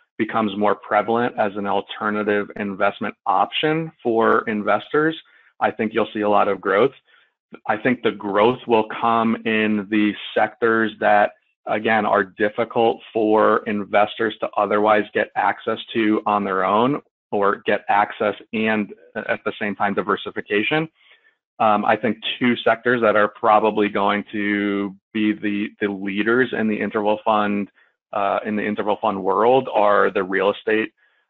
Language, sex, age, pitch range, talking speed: English, male, 30-49, 100-110 Hz, 150 wpm